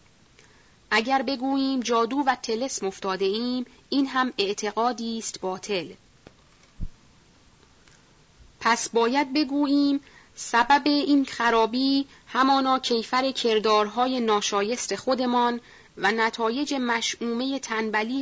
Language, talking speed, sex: Persian, 85 wpm, female